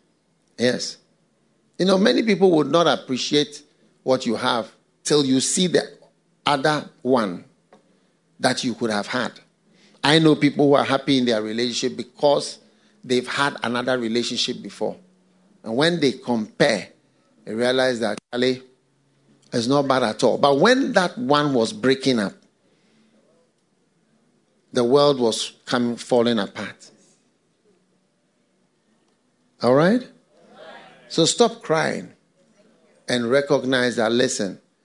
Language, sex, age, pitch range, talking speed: English, male, 50-69, 120-150 Hz, 125 wpm